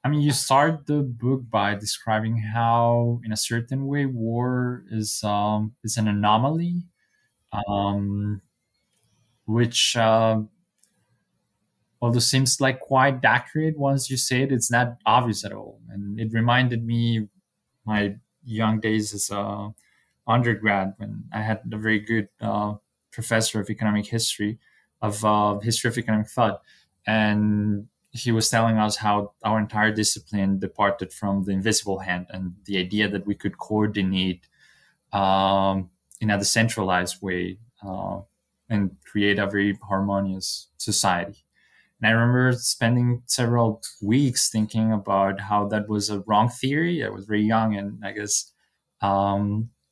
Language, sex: English, male